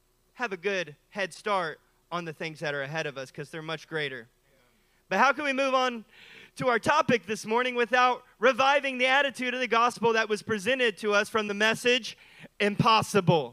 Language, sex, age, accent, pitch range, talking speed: English, male, 30-49, American, 205-260 Hz, 195 wpm